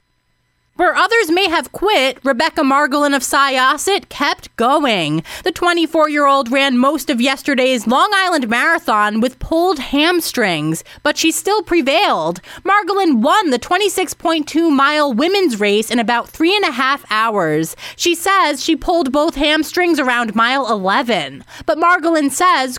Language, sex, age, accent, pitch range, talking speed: English, female, 20-39, American, 250-335 Hz, 135 wpm